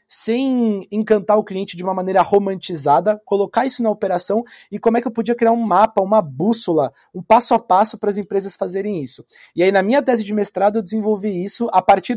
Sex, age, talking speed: male, 20-39, 215 wpm